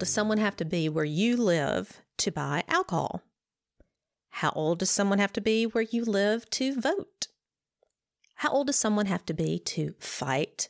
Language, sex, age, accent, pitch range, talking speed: English, female, 40-59, American, 165-250 Hz, 180 wpm